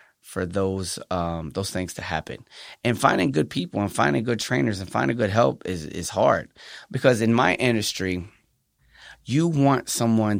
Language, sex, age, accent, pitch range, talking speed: English, male, 30-49, American, 95-120 Hz, 165 wpm